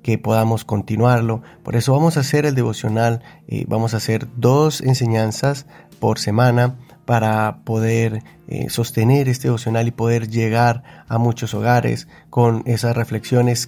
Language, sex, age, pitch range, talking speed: Spanish, male, 30-49, 110-130 Hz, 145 wpm